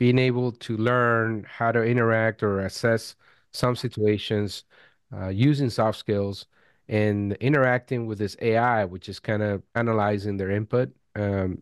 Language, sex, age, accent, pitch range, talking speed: English, male, 30-49, American, 100-120 Hz, 145 wpm